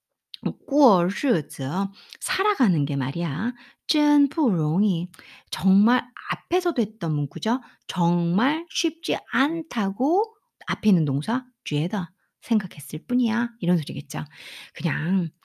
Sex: female